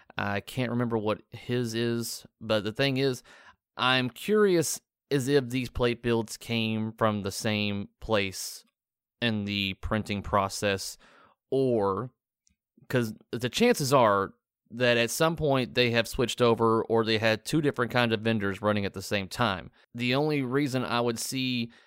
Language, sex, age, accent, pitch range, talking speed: English, male, 30-49, American, 110-125 Hz, 160 wpm